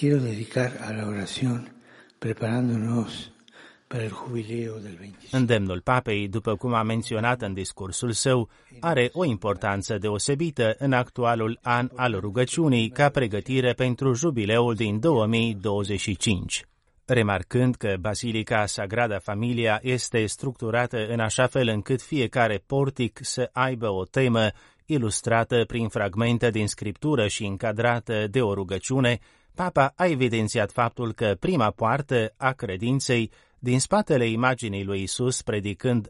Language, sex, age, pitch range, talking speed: Romanian, male, 30-49, 105-125 Hz, 110 wpm